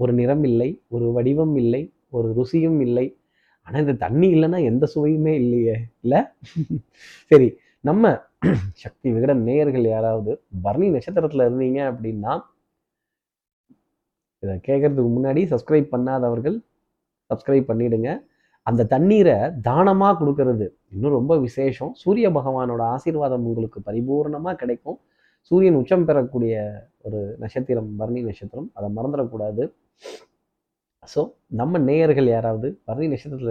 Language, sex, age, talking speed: Tamil, male, 30-49, 105 wpm